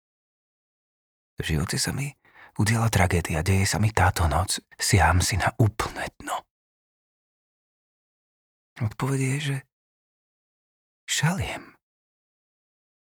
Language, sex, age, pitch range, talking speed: Slovak, male, 30-49, 95-125 Hz, 90 wpm